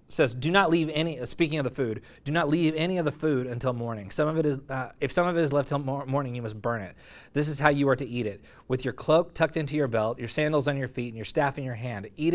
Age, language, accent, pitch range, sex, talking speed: 30-49, English, American, 125-150 Hz, male, 310 wpm